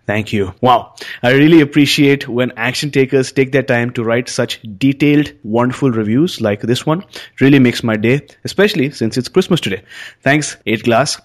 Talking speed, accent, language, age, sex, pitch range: 170 wpm, Indian, English, 30-49, male, 115-145 Hz